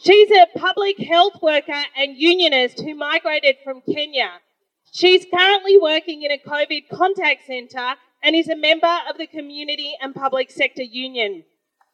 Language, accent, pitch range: English, Australian, 275-335 Hz